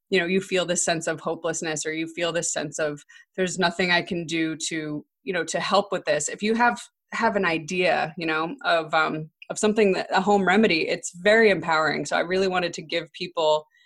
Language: English